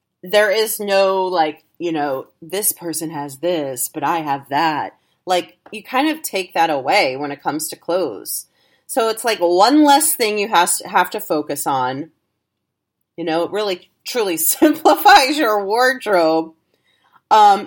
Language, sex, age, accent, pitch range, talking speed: English, female, 30-49, American, 165-220 Hz, 155 wpm